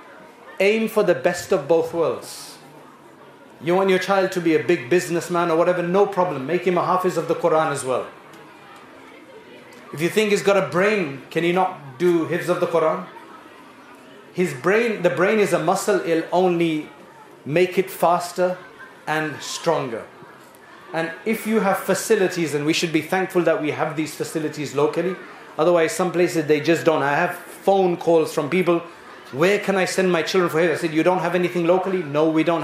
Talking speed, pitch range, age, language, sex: 190 wpm, 160-185 Hz, 30-49, English, male